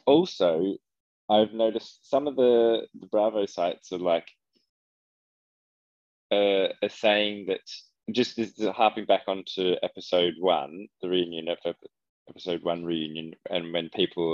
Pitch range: 85-105 Hz